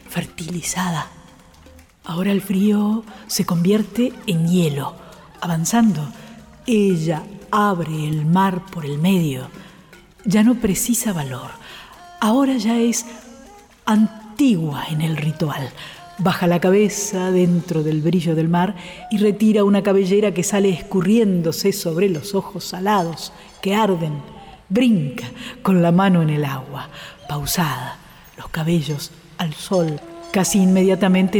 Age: 50-69